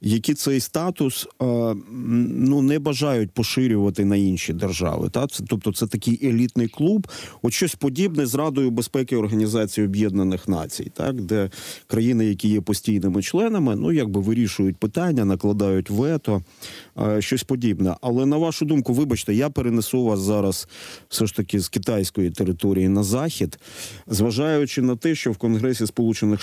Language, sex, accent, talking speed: Ukrainian, male, native, 150 wpm